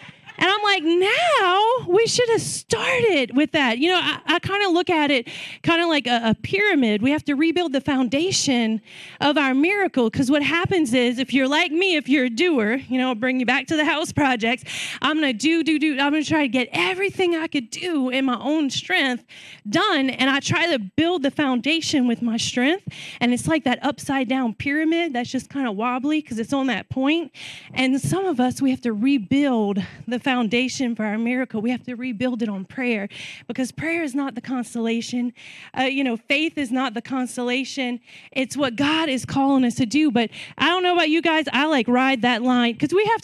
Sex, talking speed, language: female, 225 wpm, English